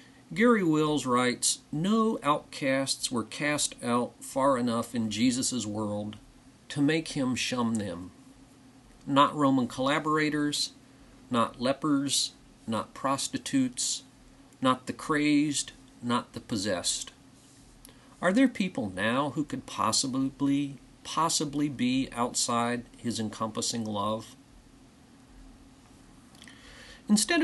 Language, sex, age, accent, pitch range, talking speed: English, male, 50-69, American, 120-170 Hz, 100 wpm